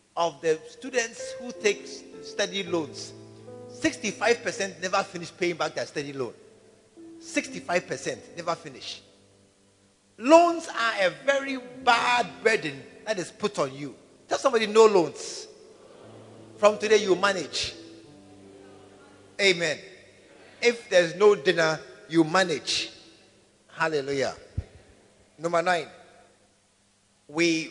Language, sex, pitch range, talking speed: English, male, 130-200 Hz, 105 wpm